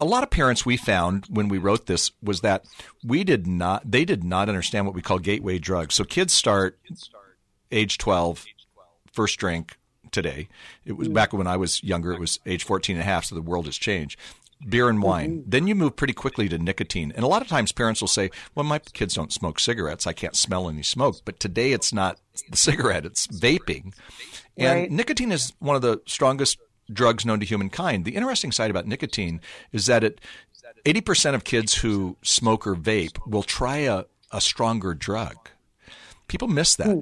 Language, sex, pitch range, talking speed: English, male, 95-125 Hz, 200 wpm